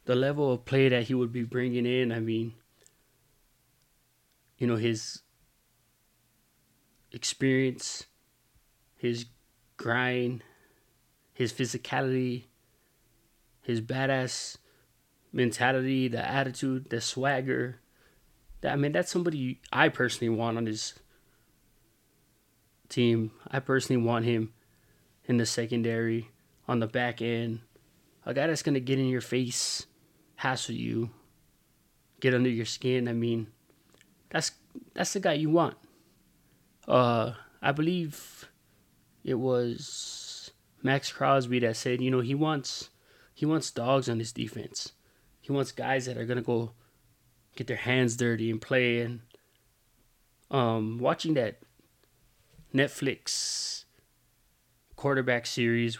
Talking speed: 120 wpm